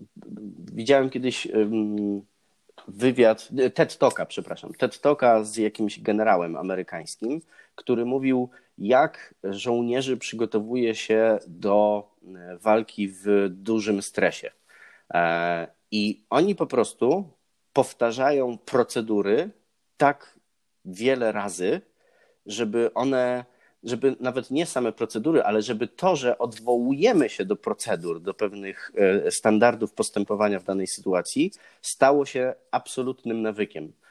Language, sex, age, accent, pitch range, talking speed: Polish, male, 30-49, native, 100-125 Hz, 100 wpm